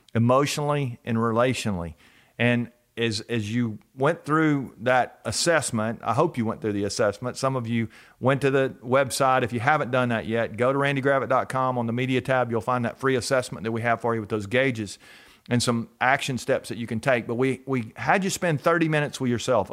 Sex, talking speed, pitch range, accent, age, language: male, 210 wpm, 115-145 Hz, American, 40-59, English